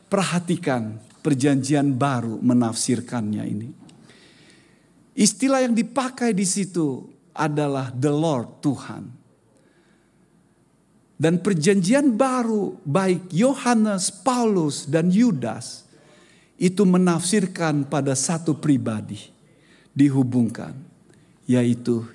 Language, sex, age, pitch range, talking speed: Indonesian, male, 50-69, 145-230 Hz, 80 wpm